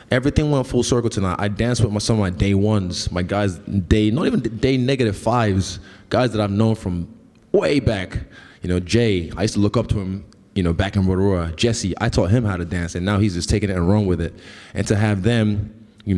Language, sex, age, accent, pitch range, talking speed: English, male, 20-39, American, 90-115 Hz, 240 wpm